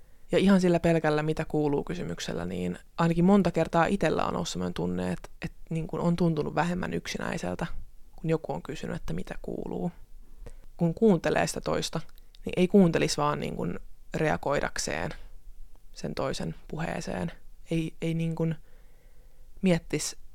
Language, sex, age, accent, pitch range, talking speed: Finnish, female, 20-39, native, 145-185 Hz, 140 wpm